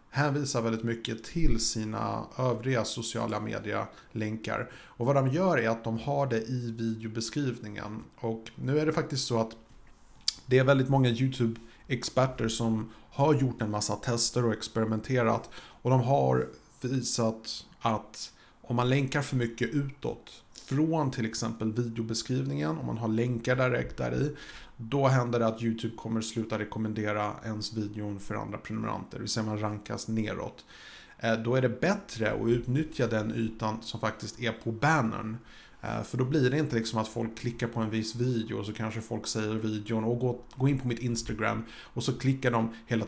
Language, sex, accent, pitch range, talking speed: Swedish, male, Norwegian, 110-125 Hz, 170 wpm